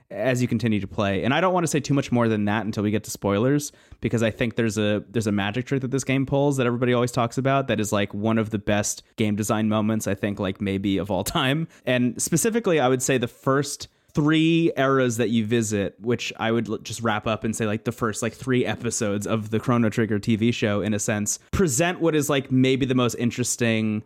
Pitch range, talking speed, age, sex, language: 105-130 Hz, 245 wpm, 20-39, male, English